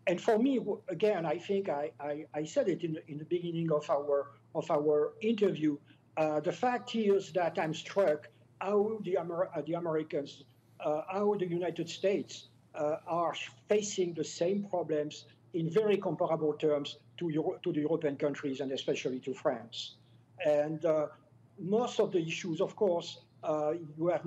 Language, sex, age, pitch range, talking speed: English, male, 60-79, 145-180 Hz, 170 wpm